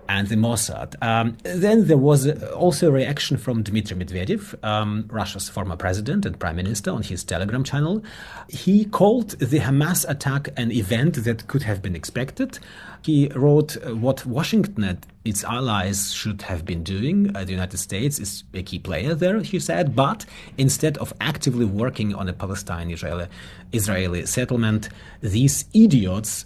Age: 30-49